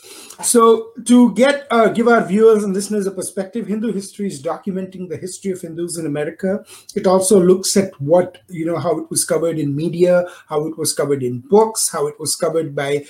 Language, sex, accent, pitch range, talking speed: English, male, Indian, 170-215 Hz, 205 wpm